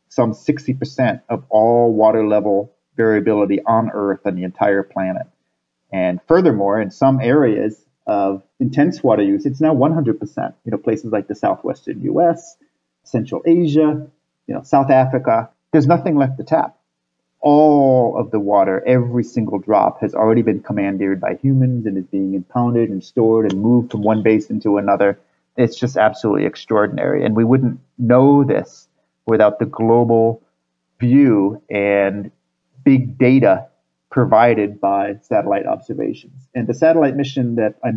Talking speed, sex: 150 wpm, male